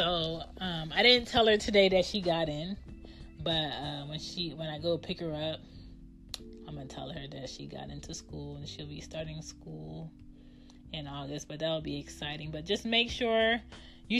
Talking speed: 200 wpm